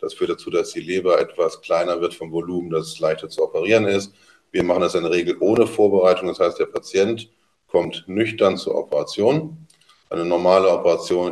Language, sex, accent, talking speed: German, male, German, 190 wpm